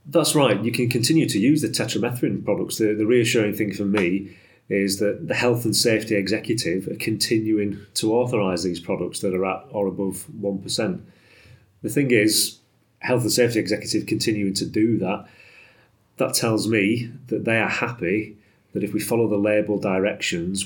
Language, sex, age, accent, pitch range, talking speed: English, male, 30-49, British, 100-115 Hz, 175 wpm